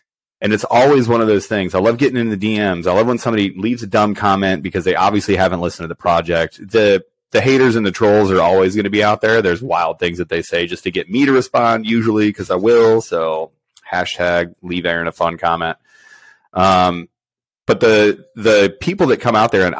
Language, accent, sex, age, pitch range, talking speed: English, American, male, 30-49, 90-115 Hz, 225 wpm